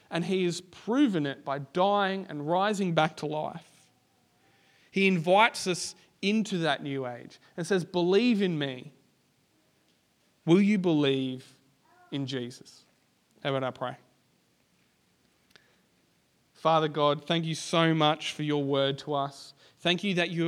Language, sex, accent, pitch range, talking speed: English, male, Australian, 135-165 Hz, 140 wpm